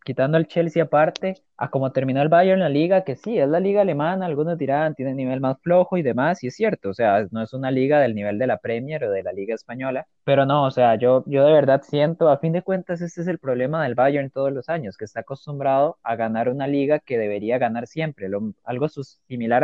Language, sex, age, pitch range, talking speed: Spanish, male, 20-39, 125-155 Hz, 250 wpm